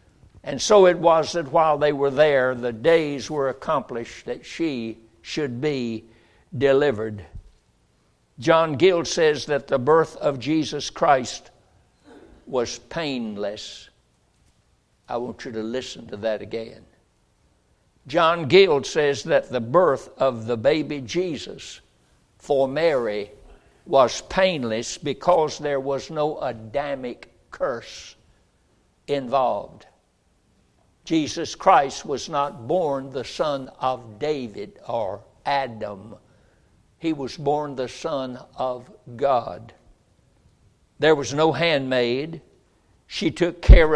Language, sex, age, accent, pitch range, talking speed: English, male, 60-79, American, 120-155 Hz, 115 wpm